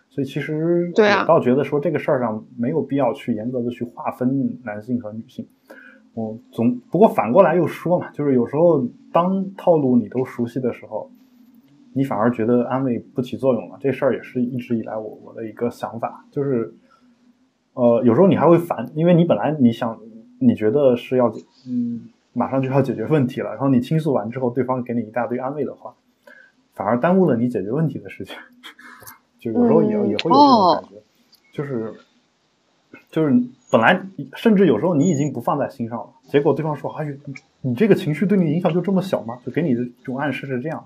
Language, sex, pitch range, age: Chinese, male, 120-175 Hz, 20-39